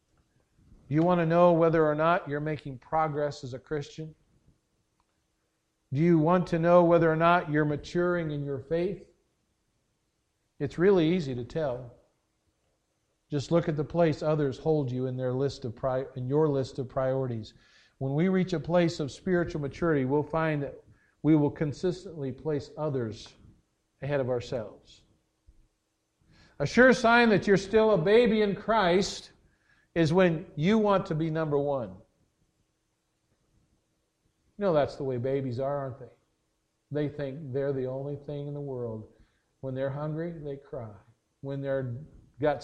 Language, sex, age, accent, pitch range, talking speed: English, male, 50-69, American, 130-165 Hz, 155 wpm